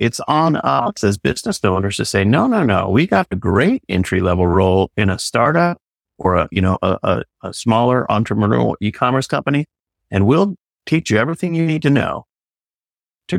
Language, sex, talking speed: English, male, 190 wpm